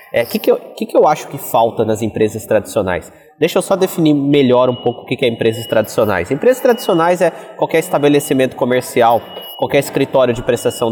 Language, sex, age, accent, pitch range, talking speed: Portuguese, male, 20-39, Brazilian, 115-155 Hz, 180 wpm